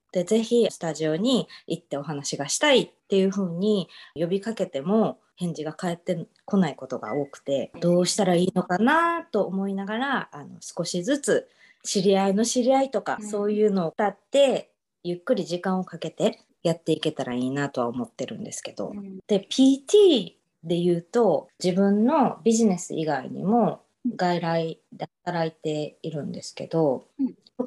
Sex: female